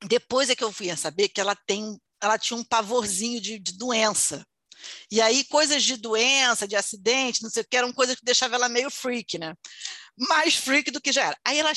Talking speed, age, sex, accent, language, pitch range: 225 wpm, 40-59, female, Brazilian, Portuguese, 250-390 Hz